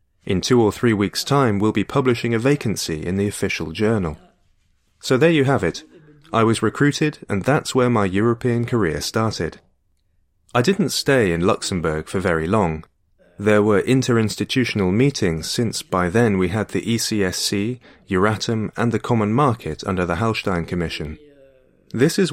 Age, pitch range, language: 30-49, 95-130 Hz, English